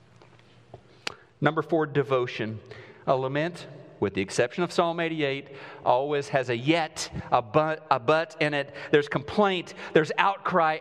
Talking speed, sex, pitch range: 135 wpm, male, 125-185 Hz